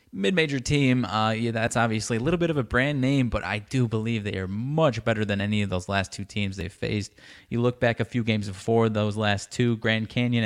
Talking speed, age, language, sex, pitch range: 240 wpm, 20-39, English, male, 100-120 Hz